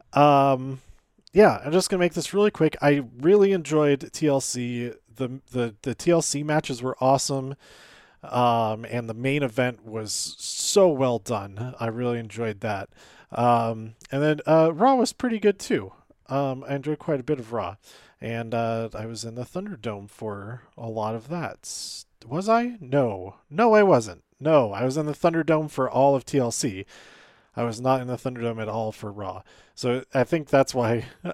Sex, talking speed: male, 180 wpm